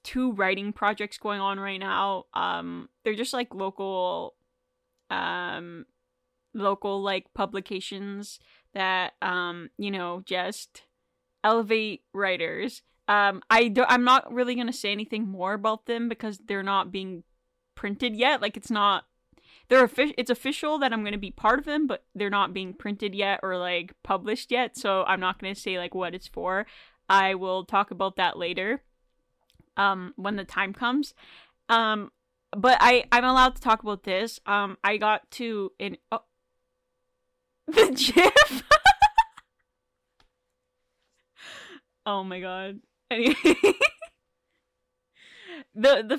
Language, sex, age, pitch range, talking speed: English, female, 10-29, 195-245 Hz, 140 wpm